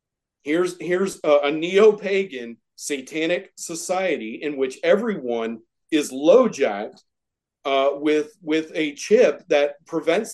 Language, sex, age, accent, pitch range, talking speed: English, male, 40-59, American, 155-220 Hz, 105 wpm